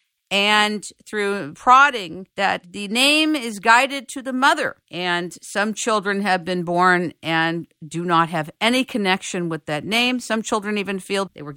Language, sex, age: English, female, 50-69